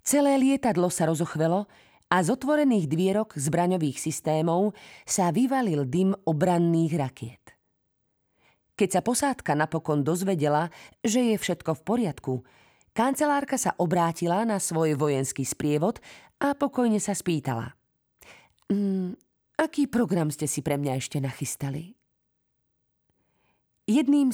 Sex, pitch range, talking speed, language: female, 150-210 Hz, 115 wpm, Slovak